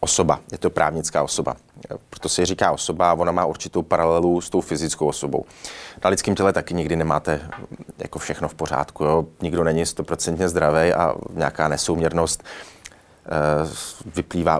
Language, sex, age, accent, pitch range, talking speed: Czech, male, 30-49, native, 80-95 Hz, 150 wpm